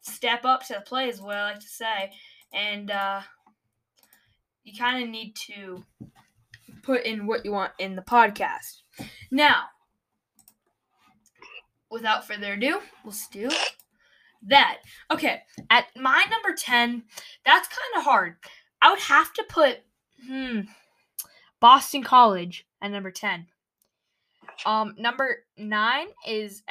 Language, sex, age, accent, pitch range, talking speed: English, female, 10-29, American, 210-270 Hz, 130 wpm